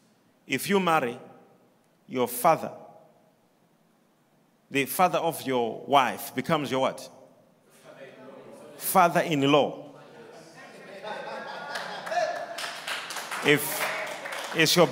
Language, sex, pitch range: English, male, 160-230 Hz